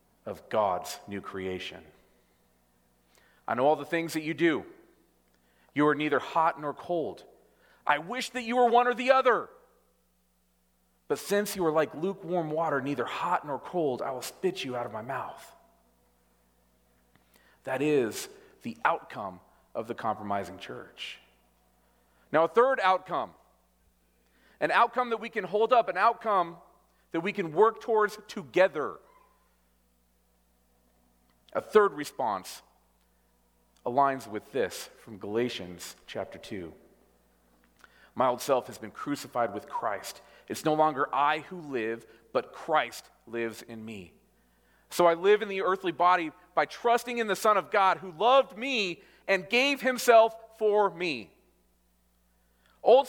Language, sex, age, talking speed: English, male, 40-59, 140 wpm